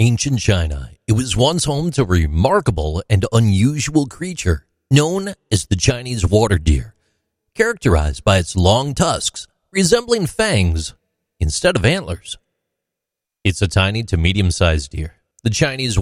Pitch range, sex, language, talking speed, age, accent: 90-125 Hz, male, English, 140 wpm, 40-59, American